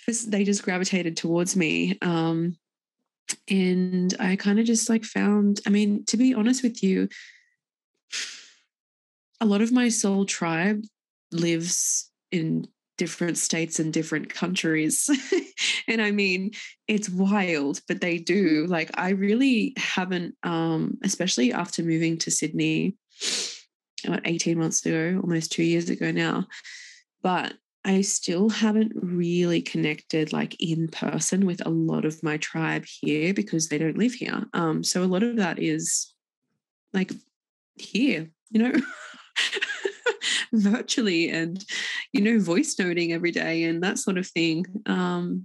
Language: English